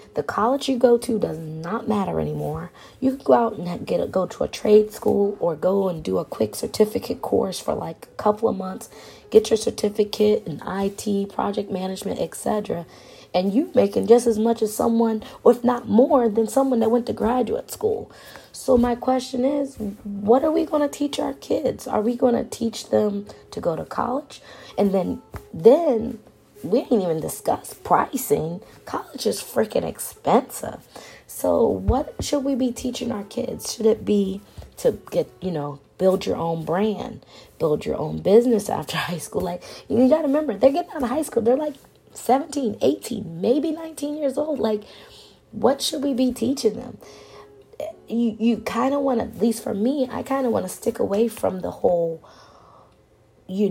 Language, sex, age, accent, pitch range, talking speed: English, female, 30-49, American, 205-265 Hz, 190 wpm